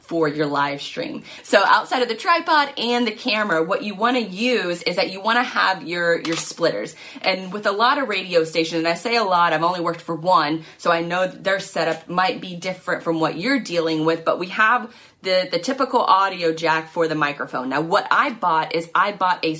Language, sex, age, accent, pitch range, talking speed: English, female, 20-39, American, 160-210 Hz, 230 wpm